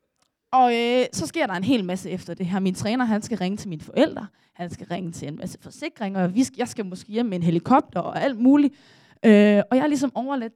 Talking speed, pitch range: 250 wpm, 190-270 Hz